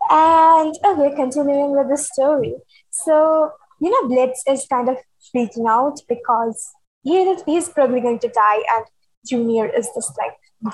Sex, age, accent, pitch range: female, 20-39, Indian, 230-295 Hz